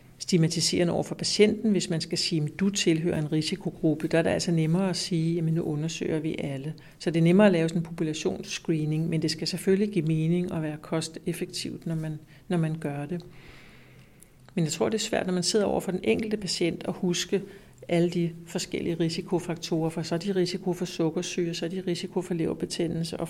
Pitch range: 160-180 Hz